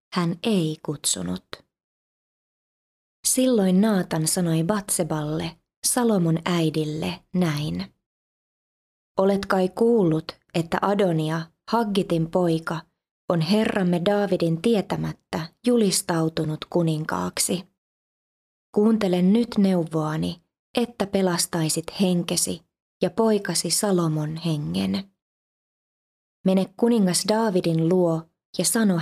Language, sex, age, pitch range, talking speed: Finnish, female, 20-39, 165-200 Hz, 80 wpm